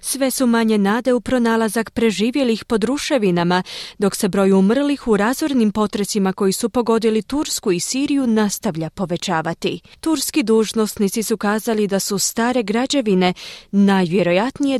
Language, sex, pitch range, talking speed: Croatian, female, 190-245 Hz, 135 wpm